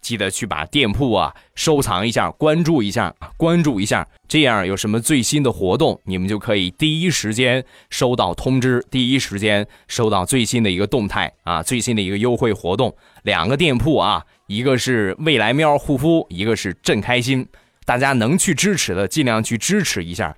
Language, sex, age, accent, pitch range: Chinese, male, 20-39, native, 110-155 Hz